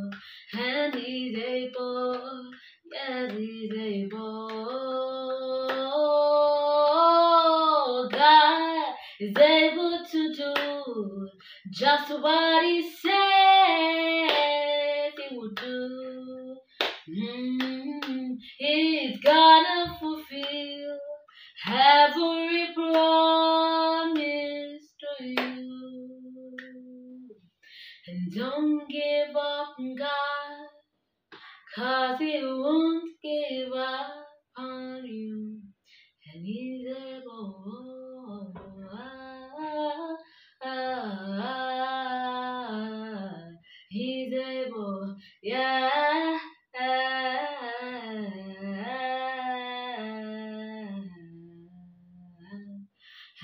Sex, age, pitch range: female, 20-39, 235-295 Hz